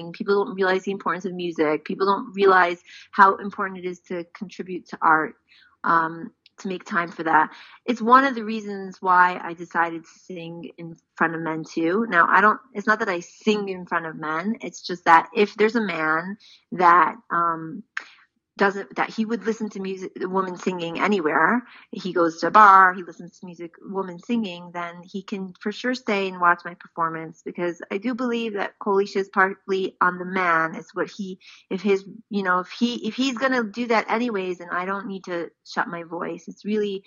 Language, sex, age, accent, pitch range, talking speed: English, female, 30-49, American, 175-230 Hz, 205 wpm